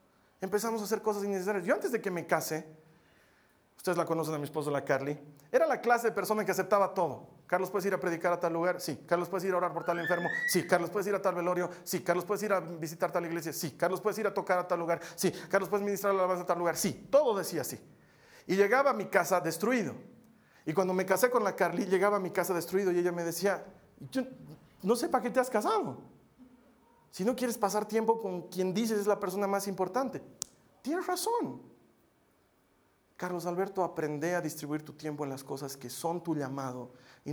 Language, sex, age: Spanish, male, 40-59